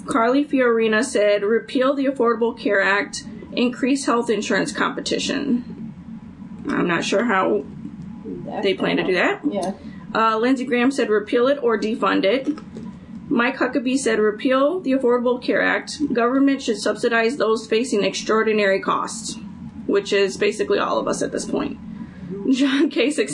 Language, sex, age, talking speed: English, female, 30-49, 145 wpm